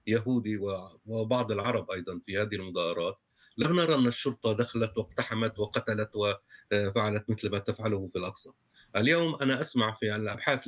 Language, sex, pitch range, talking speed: Arabic, male, 115-145 Hz, 135 wpm